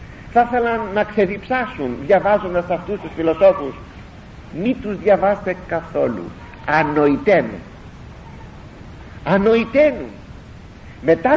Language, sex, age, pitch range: Greek, male, 50-69, 165-255 Hz